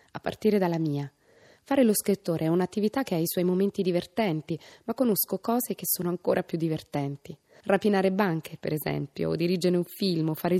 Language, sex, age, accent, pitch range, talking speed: Italian, female, 20-39, native, 155-195 Hz, 185 wpm